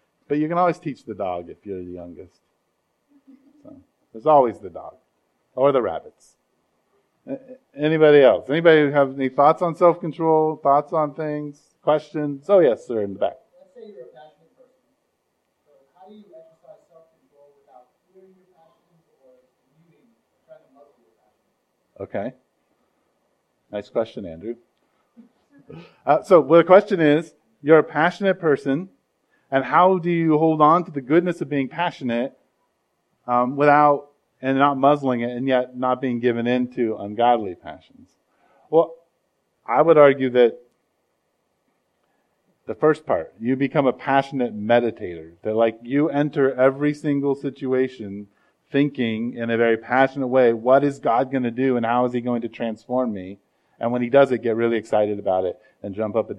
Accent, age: American, 40-59